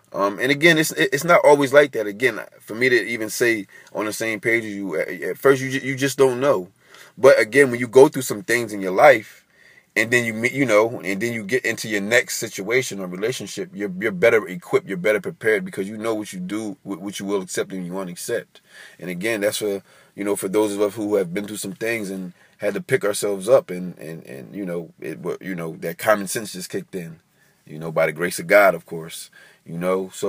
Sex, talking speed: male, 250 wpm